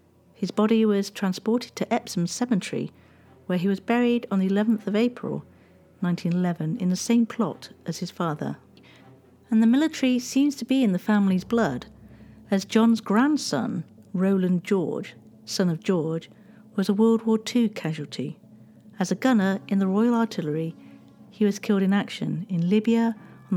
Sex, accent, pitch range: female, British, 175-230 Hz